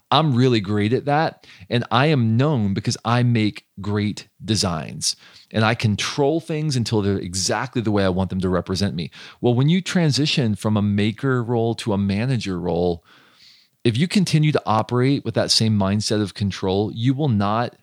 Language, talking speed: English, 185 wpm